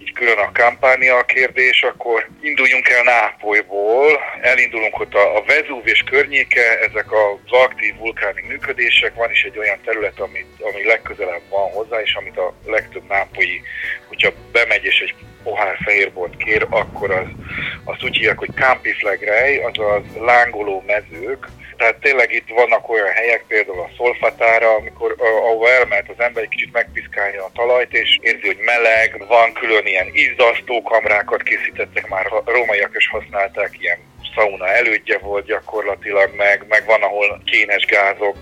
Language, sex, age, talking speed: Hungarian, male, 50-69, 150 wpm